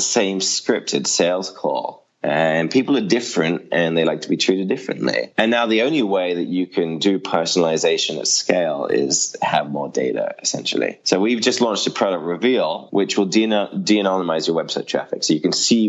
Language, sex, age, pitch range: English, male, 20-39, 80-105 Hz